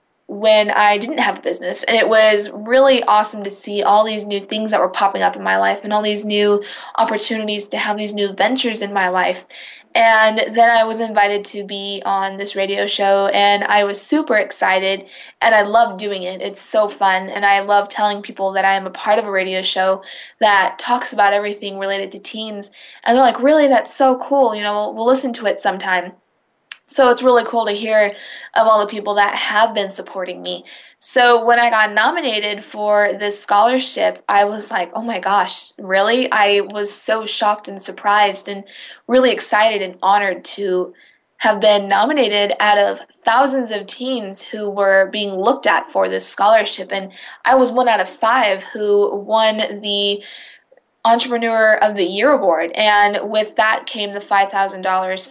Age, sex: 20-39, female